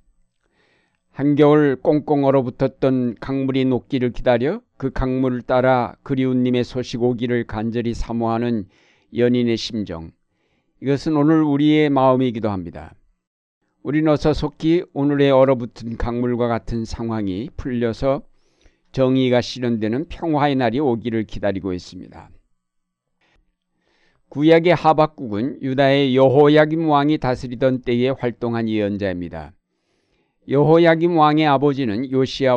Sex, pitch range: male, 115-140 Hz